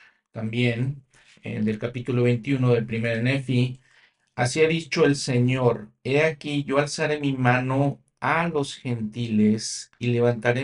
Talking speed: 135 wpm